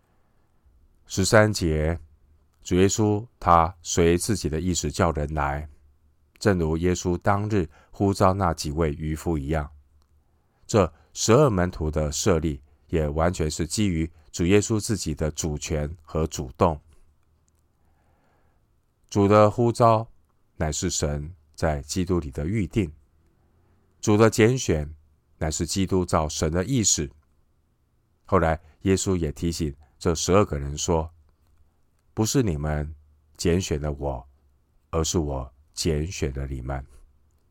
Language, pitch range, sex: Chinese, 75-95 Hz, male